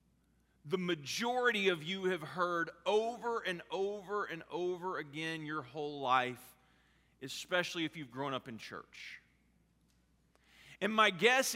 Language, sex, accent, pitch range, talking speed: English, male, American, 155-225 Hz, 130 wpm